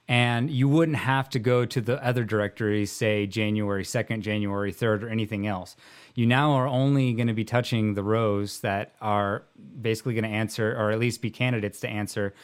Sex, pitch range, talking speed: male, 105-130 Hz, 190 wpm